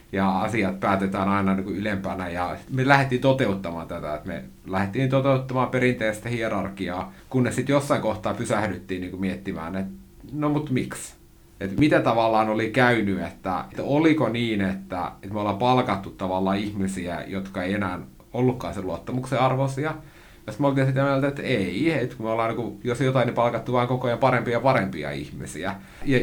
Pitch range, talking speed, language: 95-130 Hz, 180 wpm, Finnish